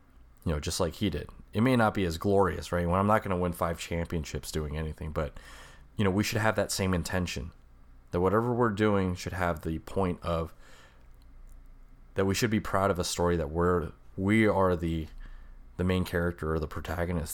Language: English